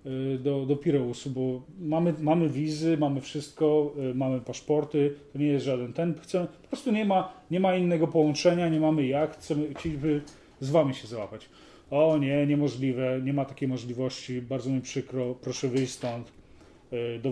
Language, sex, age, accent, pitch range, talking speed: Polish, male, 30-49, native, 130-165 Hz, 165 wpm